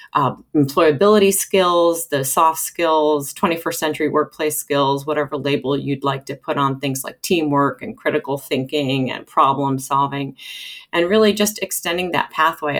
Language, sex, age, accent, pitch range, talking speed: English, female, 30-49, American, 140-170 Hz, 150 wpm